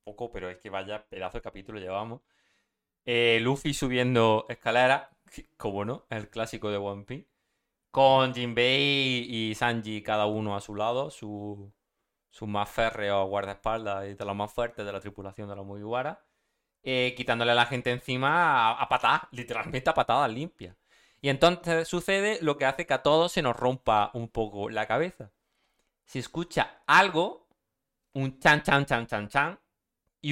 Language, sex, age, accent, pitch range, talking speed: Spanish, male, 30-49, Spanish, 105-140 Hz, 165 wpm